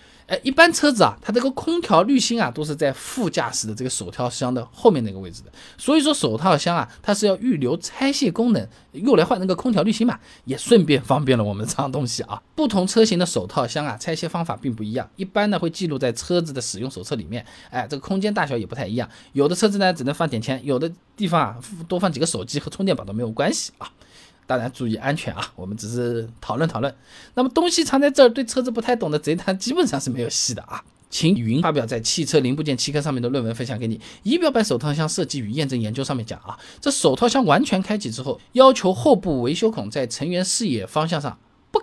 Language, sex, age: Chinese, male, 20-39